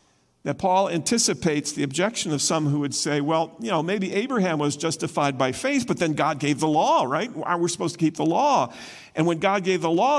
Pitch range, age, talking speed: 160-200 Hz, 50-69, 230 wpm